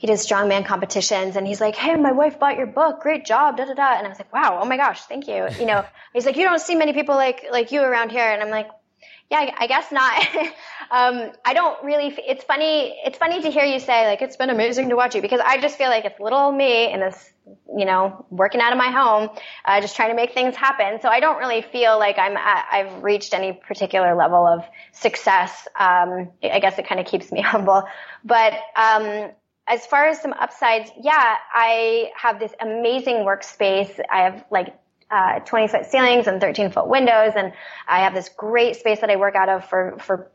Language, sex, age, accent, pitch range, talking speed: English, female, 10-29, American, 200-260 Hz, 230 wpm